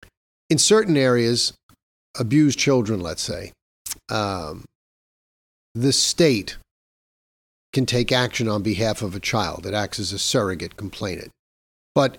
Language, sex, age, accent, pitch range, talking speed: English, male, 50-69, American, 110-150 Hz, 125 wpm